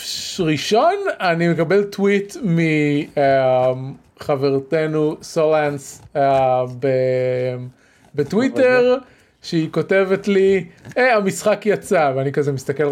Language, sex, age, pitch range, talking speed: Hebrew, male, 30-49, 150-230 Hz, 70 wpm